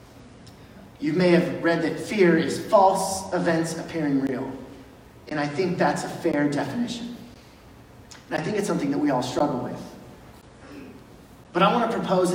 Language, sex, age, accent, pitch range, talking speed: English, male, 30-49, American, 140-180 Hz, 160 wpm